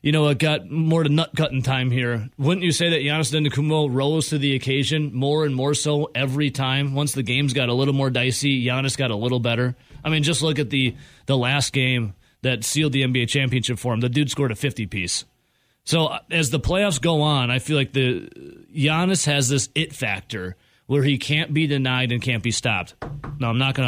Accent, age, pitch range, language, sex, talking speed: American, 30-49, 125-155 Hz, English, male, 220 wpm